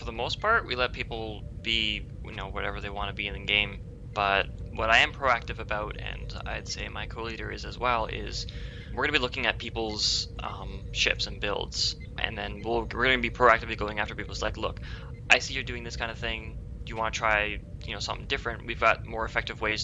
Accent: American